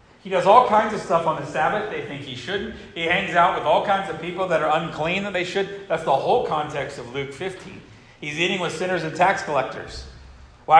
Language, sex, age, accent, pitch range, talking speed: English, male, 50-69, American, 140-180 Hz, 235 wpm